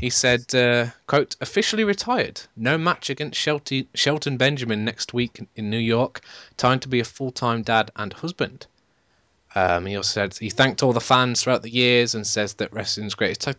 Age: 20-39